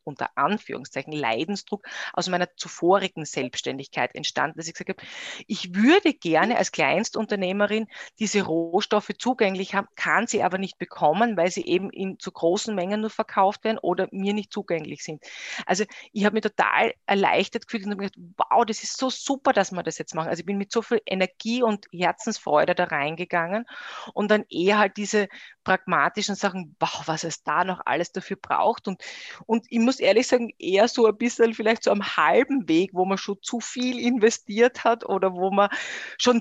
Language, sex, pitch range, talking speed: German, female, 185-235 Hz, 185 wpm